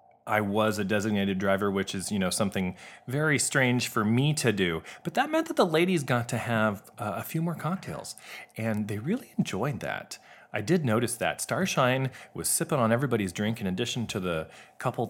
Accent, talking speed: American, 200 wpm